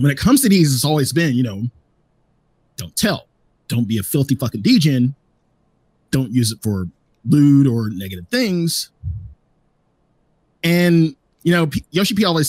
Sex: male